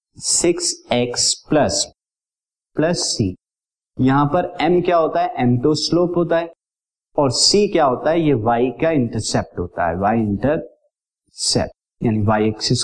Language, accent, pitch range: Hindi, native, 120-150 Hz